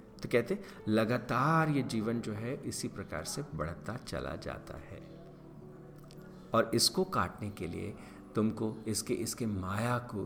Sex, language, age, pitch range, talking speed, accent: male, Hindi, 50-69, 90-115 Hz, 140 wpm, native